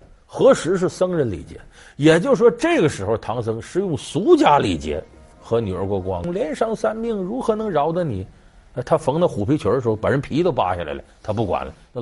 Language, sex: Chinese, male